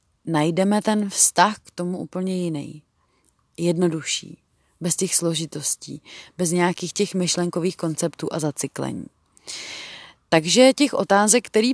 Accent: native